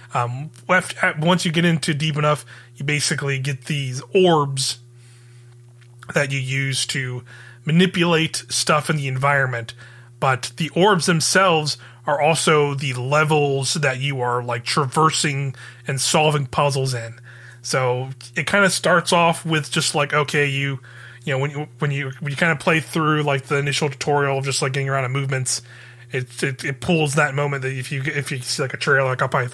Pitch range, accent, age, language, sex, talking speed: 125-155 Hz, American, 20-39, English, male, 185 wpm